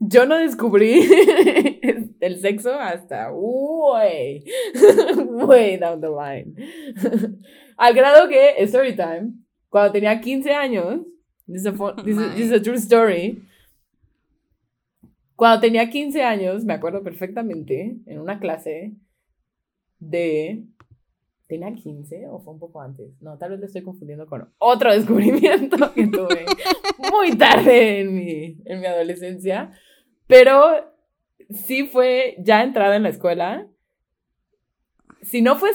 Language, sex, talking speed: Spanish, female, 130 wpm